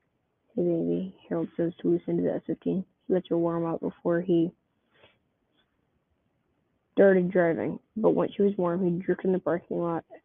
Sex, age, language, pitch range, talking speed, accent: female, 20-39, English, 170-205 Hz, 170 wpm, American